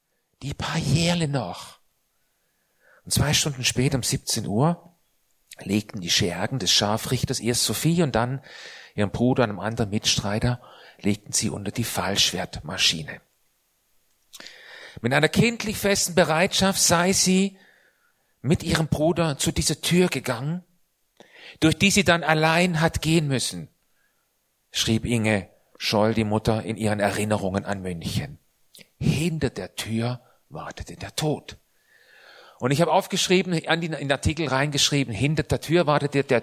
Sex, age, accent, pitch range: male, 40-59, German, 120-175 Hz